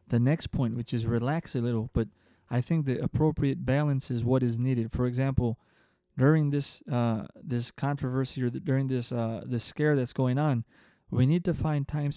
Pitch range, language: 120-140 Hz, English